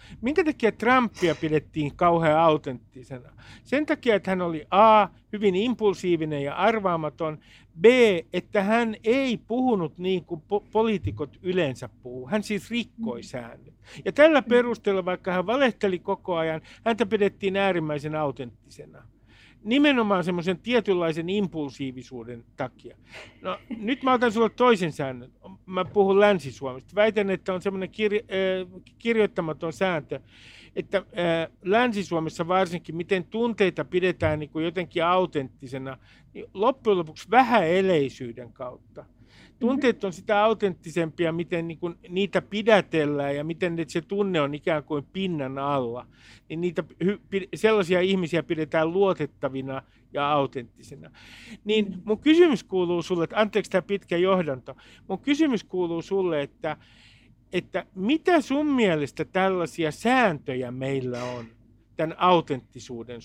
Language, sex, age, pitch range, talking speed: Finnish, male, 50-69, 145-205 Hz, 120 wpm